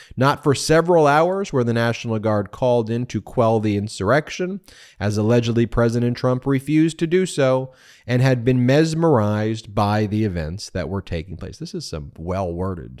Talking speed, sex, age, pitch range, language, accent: 170 wpm, male, 30-49, 100-140 Hz, English, American